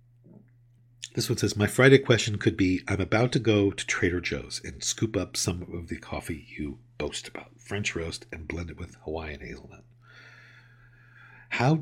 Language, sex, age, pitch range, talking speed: English, male, 50-69, 85-120 Hz, 175 wpm